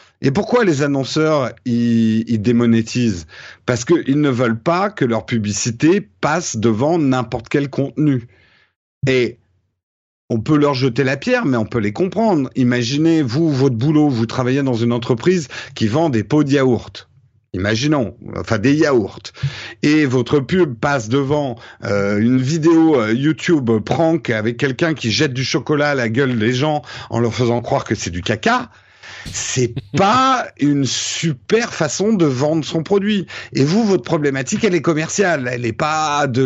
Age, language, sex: 50-69, French, male